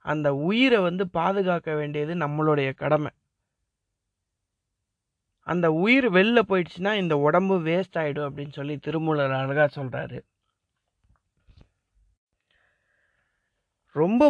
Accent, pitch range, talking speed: native, 145-185 Hz, 90 wpm